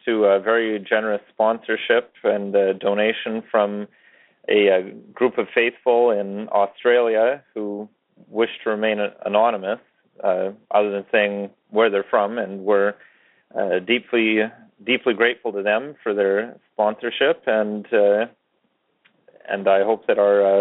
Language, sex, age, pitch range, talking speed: English, male, 30-49, 100-110 Hz, 135 wpm